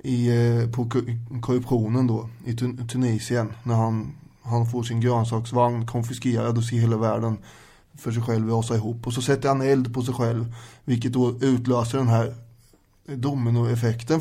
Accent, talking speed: Swedish, 155 wpm